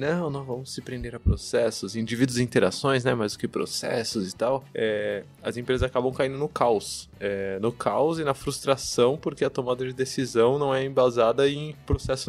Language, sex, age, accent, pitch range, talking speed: Portuguese, male, 20-39, Brazilian, 115-145 Hz, 195 wpm